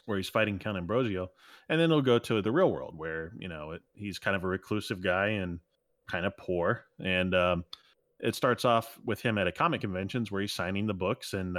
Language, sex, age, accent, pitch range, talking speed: English, male, 30-49, American, 90-120 Hz, 230 wpm